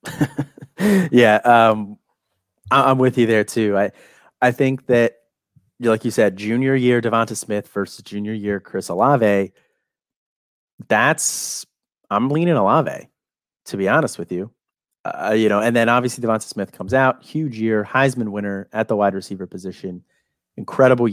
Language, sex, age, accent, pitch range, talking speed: English, male, 30-49, American, 100-120 Hz, 150 wpm